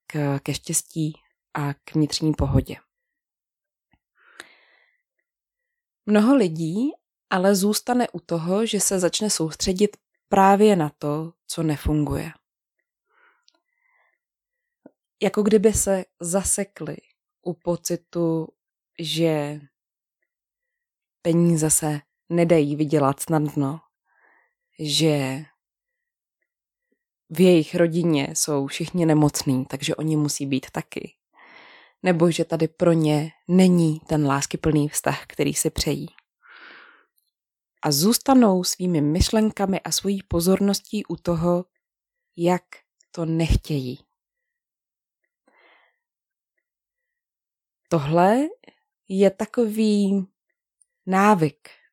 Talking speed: 85 wpm